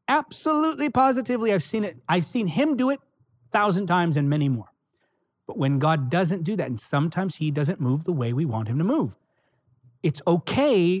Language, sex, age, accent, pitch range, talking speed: English, male, 30-49, American, 145-200 Hz, 195 wpm